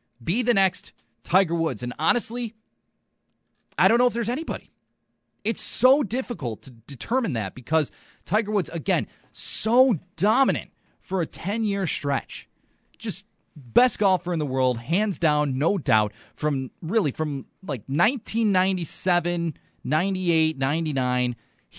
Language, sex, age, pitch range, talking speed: English, male, 30-49, 125-185 Hz, 125 wpm